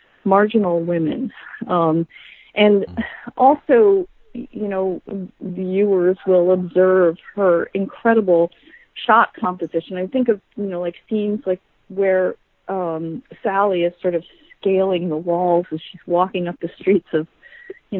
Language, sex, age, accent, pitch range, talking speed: English, female, 40-59, American, 170-215 Hz, 130 wpm